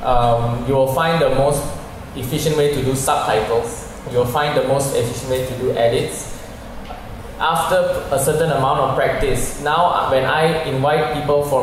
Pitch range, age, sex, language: 120-150 Hz, 20-39, male, English